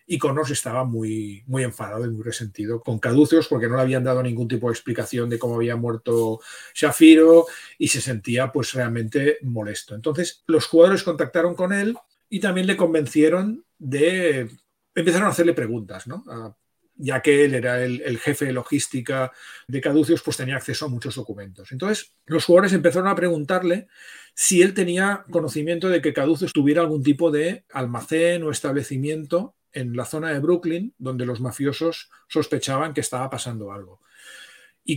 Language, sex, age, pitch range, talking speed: Spanish, male, 40-59, 125-170 Hz, 165 wpm